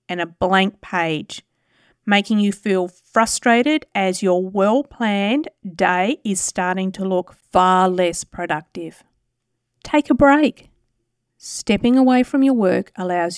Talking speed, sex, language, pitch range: 125 wpm, female, English, 185-235 Hz